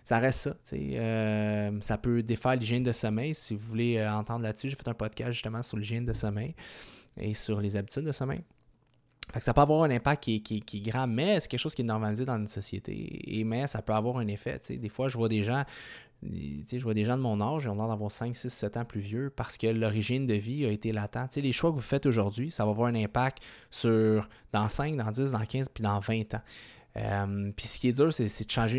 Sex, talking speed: male, 255 wpm